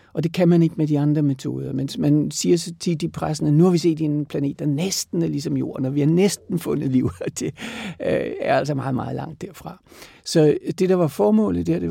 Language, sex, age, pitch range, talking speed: Danish, male, 60-79, 145-170 Hz, 235 wpm